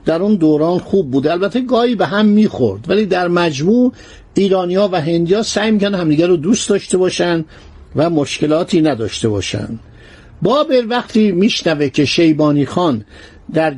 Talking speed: 145 wpm